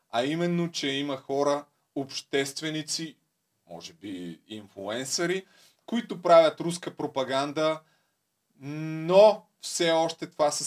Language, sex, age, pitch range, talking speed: Bulgarian, male, 30-49, 125-165 Hz, 100 wpm